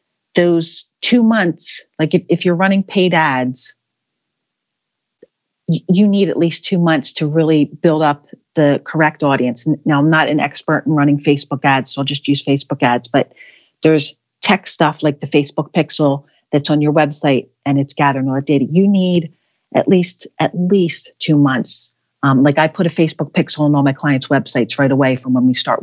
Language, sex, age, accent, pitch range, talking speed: English, female, 40-59, American, 140-165 Hz, 190 wpm